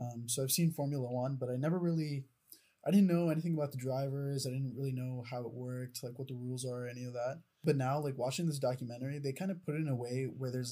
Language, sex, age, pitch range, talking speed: English, male, 10-29, 125-145 Hz, 270 wpm